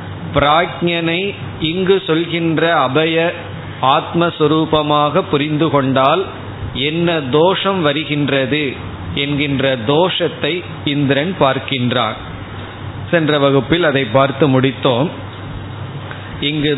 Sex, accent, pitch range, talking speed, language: male, native, 130-165 Hz, 70 wpm, Tamil